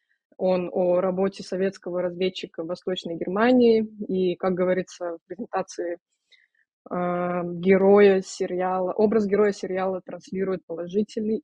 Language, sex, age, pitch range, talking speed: Russian, female, 20-39, 180-205 Hz, 105 wpm